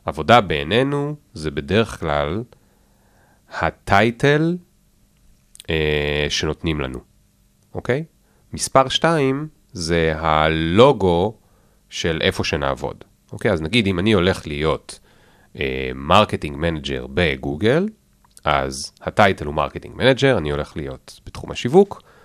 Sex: male